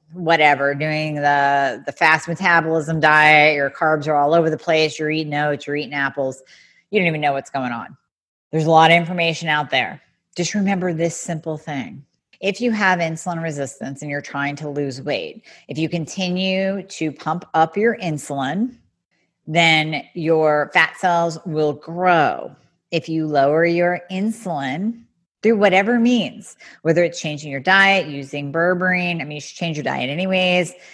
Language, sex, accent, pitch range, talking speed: English, female, American, 145-180 Hz, 165 wpm